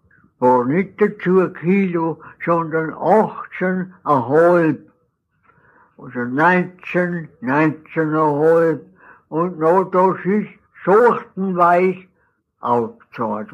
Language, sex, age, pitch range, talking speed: German, male, 60-79, 125-170 Hz, 70 wpm